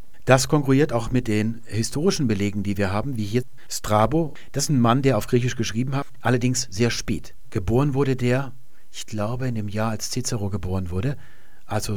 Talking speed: 190 wpm